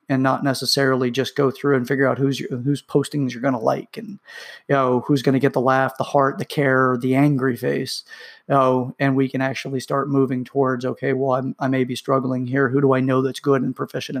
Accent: American